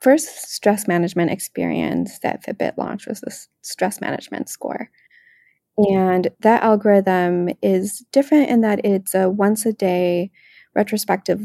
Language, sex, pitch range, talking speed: English, female, 190-235 Hz, 130 wpm